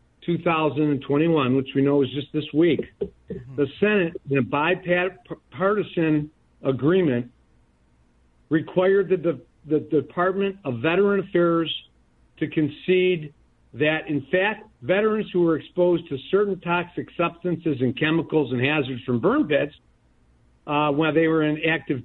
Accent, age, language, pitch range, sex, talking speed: American, 50-69, English, 135-165 Hz, male, 130 wpm